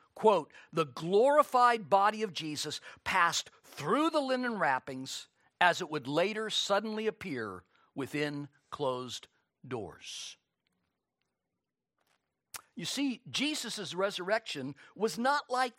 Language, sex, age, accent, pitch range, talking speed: English, male, 50-69, American, 155-235 Hz, 105 wpm